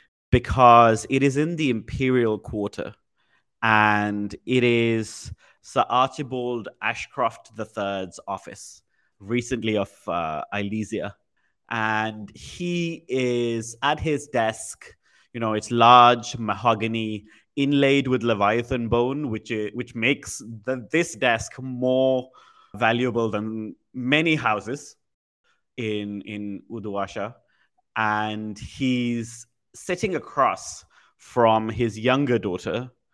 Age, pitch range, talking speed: 30-49, 105-130 Hz, 105 wpm